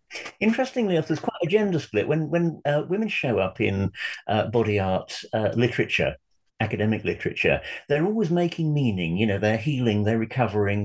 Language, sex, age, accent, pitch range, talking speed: English, male, 50-69, British, 105-145 Hz, 165 wpm